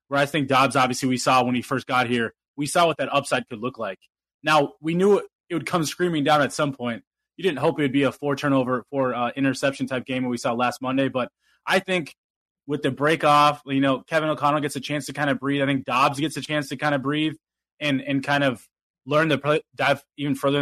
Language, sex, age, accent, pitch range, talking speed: English, male, 20-39, American, 130-150 Hz, 245 wpm